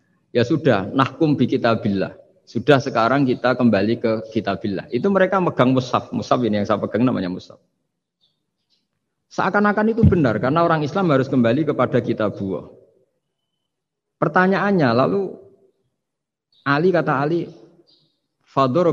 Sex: male